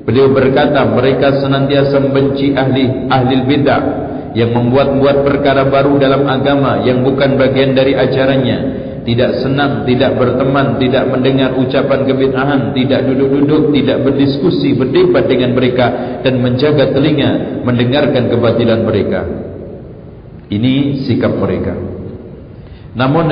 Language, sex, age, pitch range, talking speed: Indonesian, male, 50-69, 125-140 Hz, 110 wpm